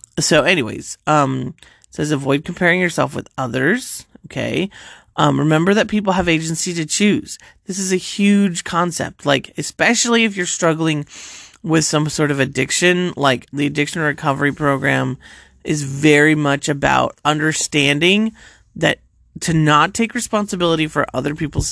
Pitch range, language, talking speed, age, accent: 140-175 Hz, English, 145 wpm, 30-49, American